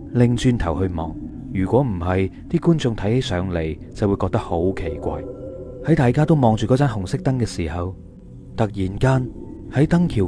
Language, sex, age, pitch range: Chinese, male, 30-49, 95-125 Hz